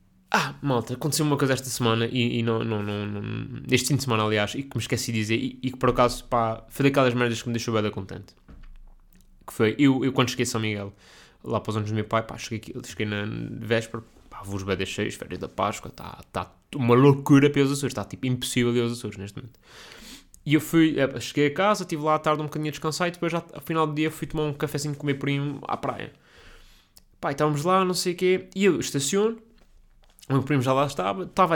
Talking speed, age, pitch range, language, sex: 255 wpm, 20-39, 110-145 Hz, Portuguese, male